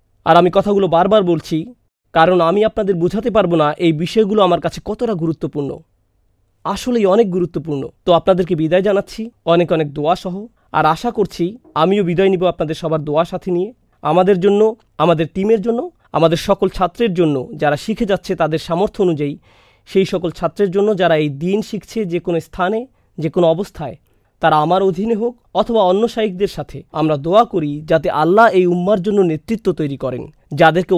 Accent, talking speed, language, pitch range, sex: native, 170 wpm, Bengali, 155-205 Hz, male